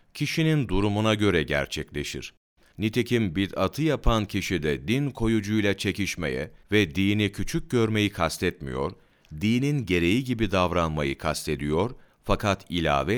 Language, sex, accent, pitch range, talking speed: Turkish, male, native, 80-110 Hz, 110 wpm